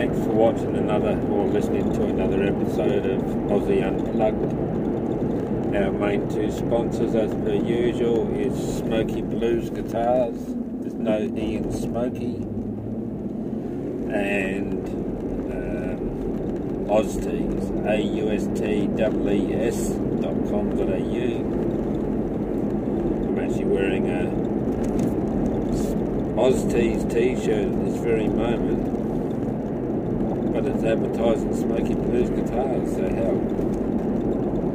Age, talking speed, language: 50-69, 85 wpm, English